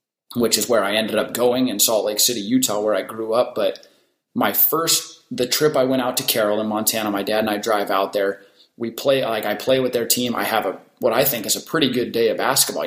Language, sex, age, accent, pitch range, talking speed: German, male, 20-39, American, 115-140 Hz, 260 wpm